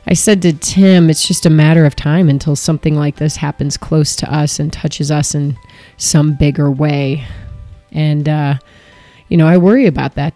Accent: American